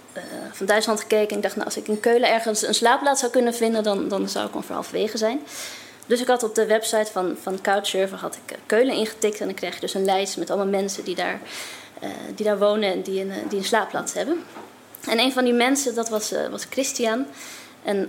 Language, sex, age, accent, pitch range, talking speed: Dutch, female, 20-39, Dutch, 200-240 Hz, 240 wpm